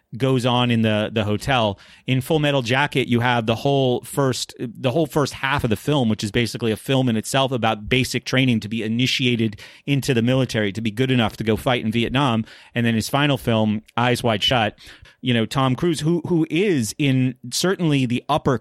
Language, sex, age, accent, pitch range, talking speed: English, male, 30-49, American, 110-135 Hz, 215 wpm